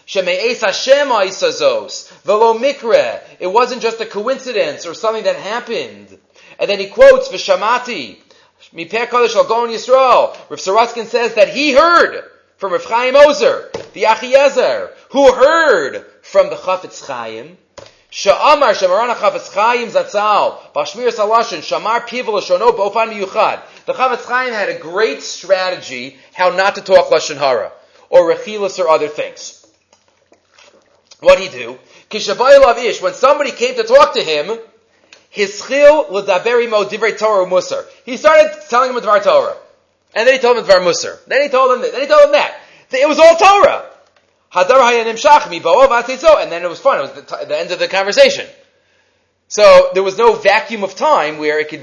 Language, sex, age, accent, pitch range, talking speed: English, male, 30-49, Canadian, 210-310 Hz, 130 wpm